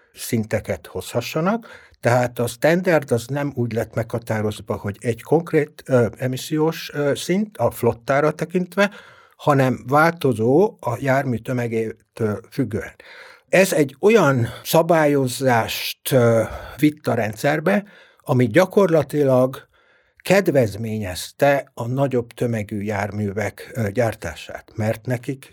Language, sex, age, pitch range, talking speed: Hungarian, male, 60-79, 115-155 Hz, 110 wpm